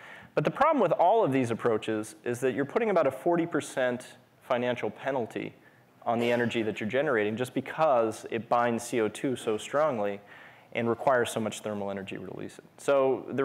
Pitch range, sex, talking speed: 110-135 Hz, male, 185 wpm